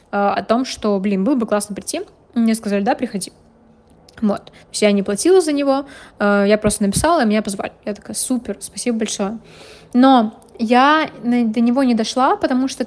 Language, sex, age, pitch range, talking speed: Russian, female, 20-39, 215-250 Hz, 175 wpm